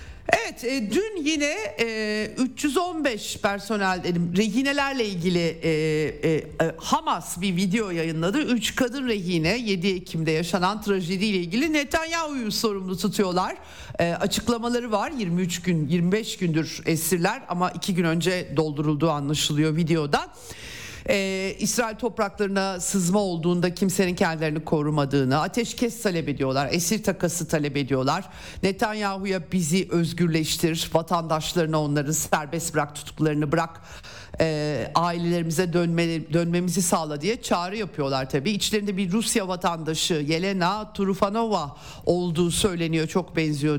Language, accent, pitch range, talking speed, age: Turkish, native, 160-210 Hz, 115 wpm, 50-69